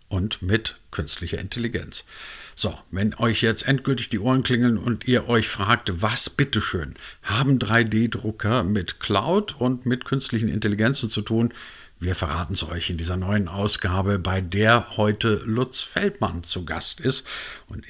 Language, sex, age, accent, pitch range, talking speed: German, male, 50-69, German, 90-120 Hz, 150 wpm